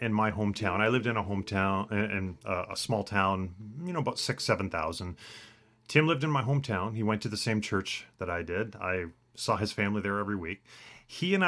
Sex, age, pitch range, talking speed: male, 40-59, 95-120 Hz, 210 wpm